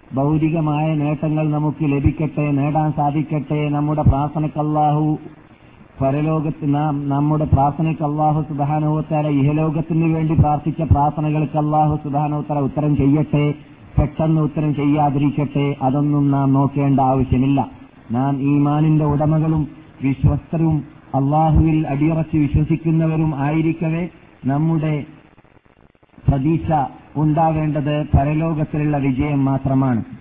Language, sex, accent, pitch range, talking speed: Malayalam, male, native, 140-155 Hz, 60 wpm